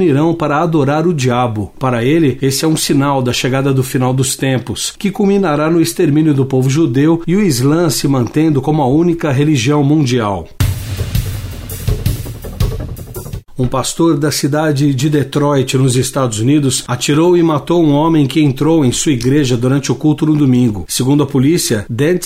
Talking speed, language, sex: 165 wpm, Portuguese, male